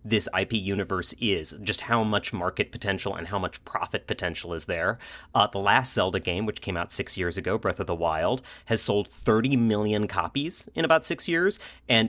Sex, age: male, 30-49